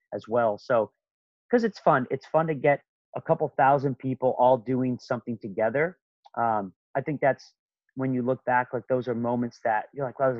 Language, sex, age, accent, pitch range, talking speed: English, male, 30-49, American, 115-145 Hz, 200 wpm